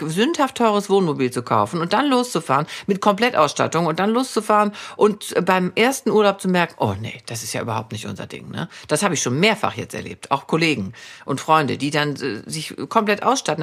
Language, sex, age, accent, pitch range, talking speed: German, female, 50-69, German, 155-220 Hz, 205 wpm